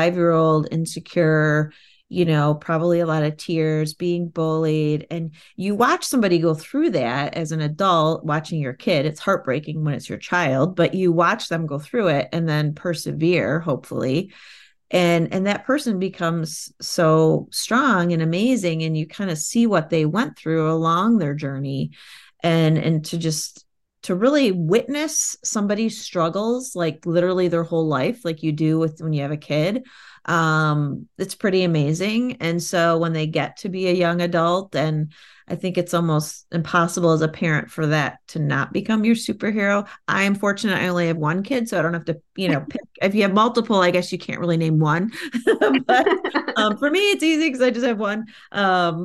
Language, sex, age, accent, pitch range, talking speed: English, female, 30-49, American, 160-205 Hz, 190 wpm